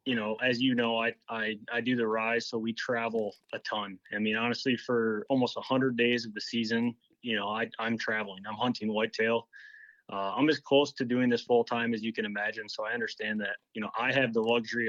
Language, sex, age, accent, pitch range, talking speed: English, male, 20-39, American, 110-130 Hz, 230 wpm